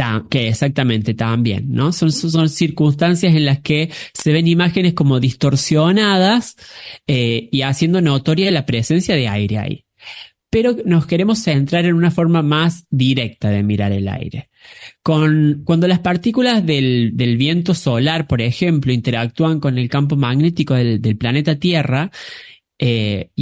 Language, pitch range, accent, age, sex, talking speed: Spanish, 135-180 Hz, Argentinian, 30-49, male, 145 wpm